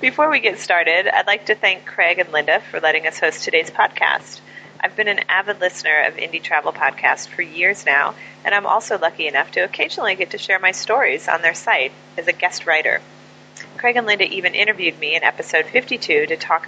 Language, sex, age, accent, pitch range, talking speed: English, female, 30-49, American, 175-225 Hz, 210 wpm